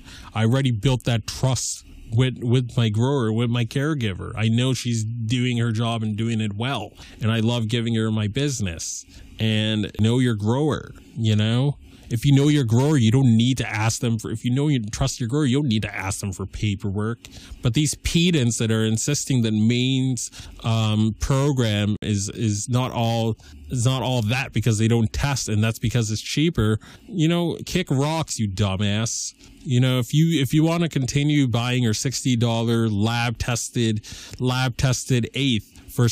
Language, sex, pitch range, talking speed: English, male, 110-135 Hz, 190 wpm